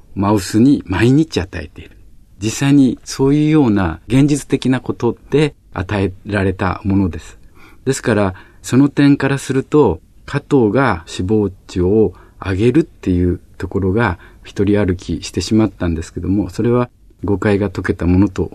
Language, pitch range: Japanese, 90-125 Hz